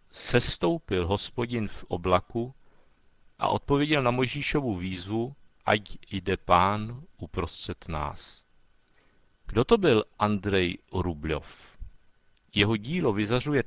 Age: 50-69